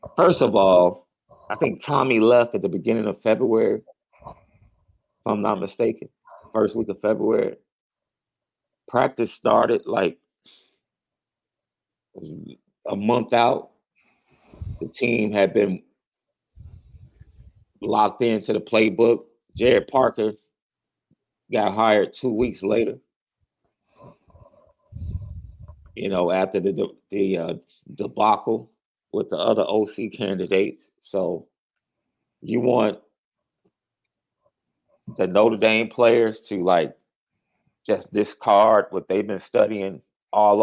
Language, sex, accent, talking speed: English, male, American, 105 wpm